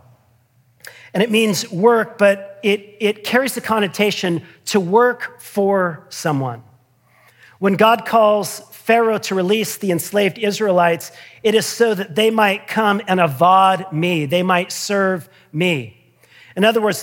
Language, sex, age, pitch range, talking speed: English, male, 40-59, 170-220 Hz, 140 wpm